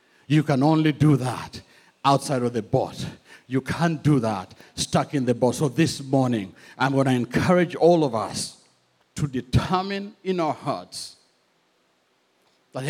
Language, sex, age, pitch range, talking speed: English, male, 60-79, 110-155 Hz, 155 wpm